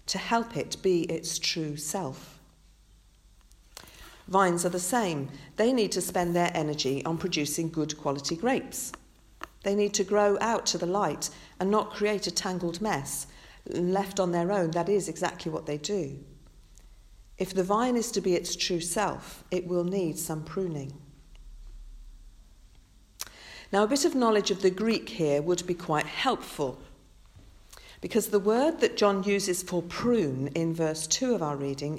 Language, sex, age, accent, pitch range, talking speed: English, female, 50-69, British, 140-195 Hz, 165 wpm